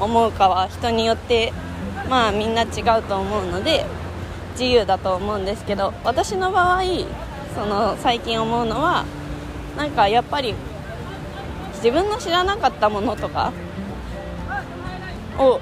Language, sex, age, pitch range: Japanese, female, 20-39, 185-255 Hz